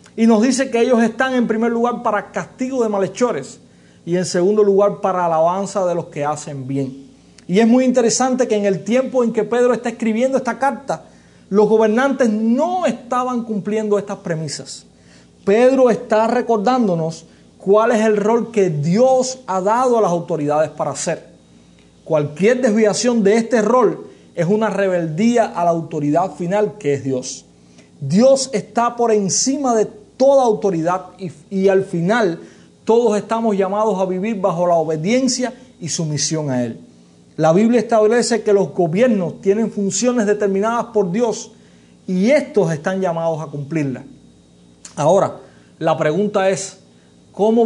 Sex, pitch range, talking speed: male, 170-230 Hz, 155 wpm